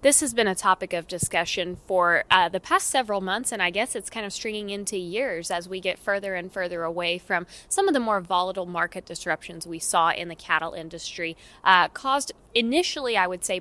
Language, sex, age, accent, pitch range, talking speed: English, female, 20-39, American, 175-215 Hz, 215 wpm